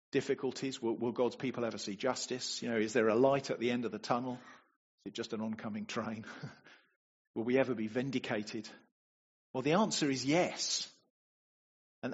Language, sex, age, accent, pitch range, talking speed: English, male, 40-59, British, 110-135 Hz, 185 wpm